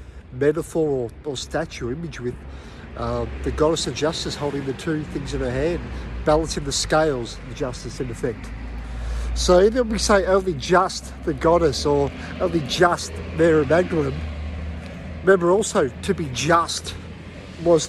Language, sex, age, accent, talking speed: English, male, 50-69, Australian, 150 wpm